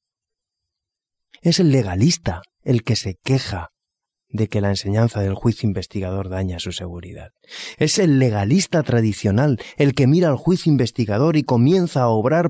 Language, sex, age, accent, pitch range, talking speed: Spanish, male, 30-49, Spanish, 100-145 Hz, 150 wpm